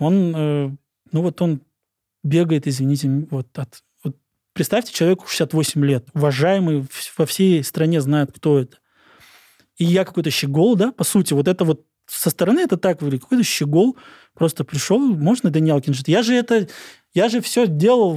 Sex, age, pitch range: male, 20-39, 150-185 Hz